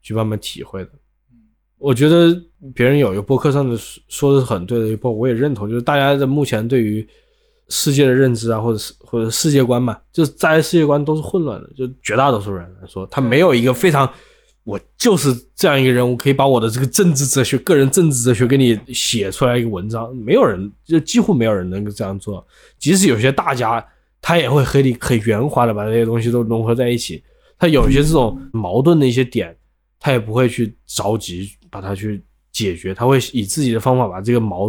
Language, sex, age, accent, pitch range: Chinese, male, 20-39, native, 110-145 Hz